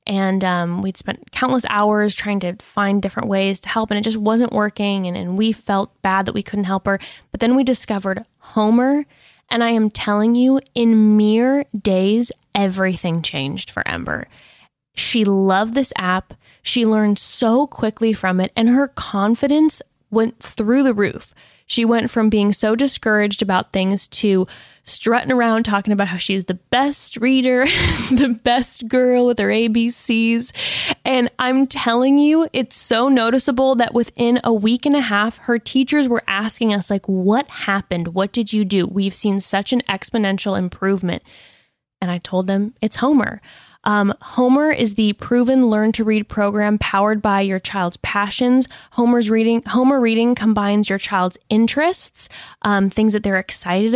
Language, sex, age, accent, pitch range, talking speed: English, female, 10-29, American, 195-240 Hz, 170 wpm